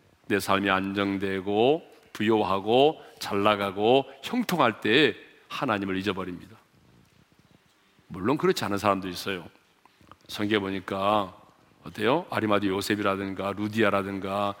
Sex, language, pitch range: male, Korean, 100-160 Hz